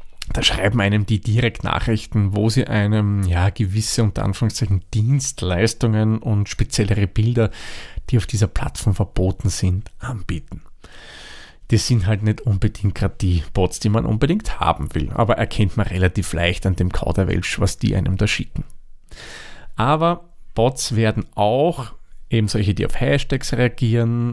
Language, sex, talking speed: German, male, 145 wpm